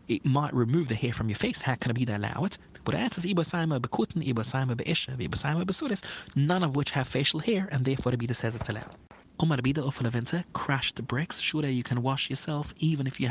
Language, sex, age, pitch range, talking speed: English, male, 30-49, 120-160 Hz, 205 wpm